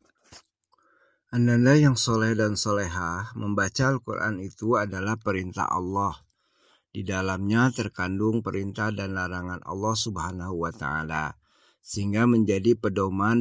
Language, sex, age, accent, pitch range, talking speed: Indonesian, male, 50-69, native, 90-110 Hz, 105 wpm